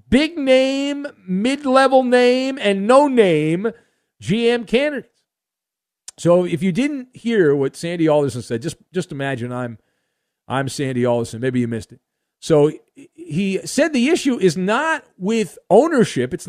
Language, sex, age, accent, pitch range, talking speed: English, male, 50-69, American, 160-255 Hz, 140 wpm